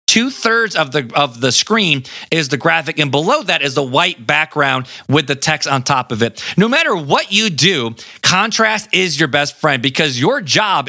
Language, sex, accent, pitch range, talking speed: English, male, American, 145-210 Hz, 185 wpm